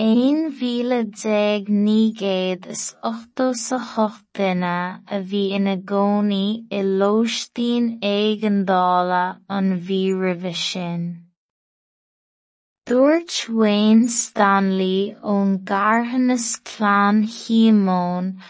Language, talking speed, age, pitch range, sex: English, 65 wpm, 20-39, 195-225 Hz, female